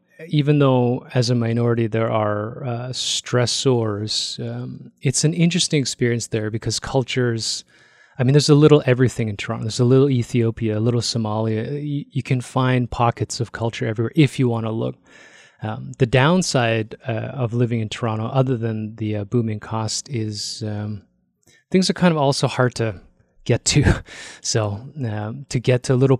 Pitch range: 115-135 Hz